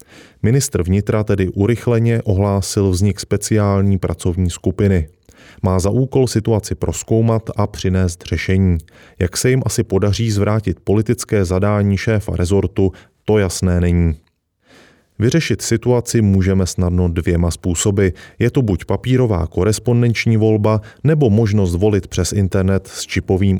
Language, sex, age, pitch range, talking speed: Czech, male, 30-49, 90-110 Hz, 125 wpm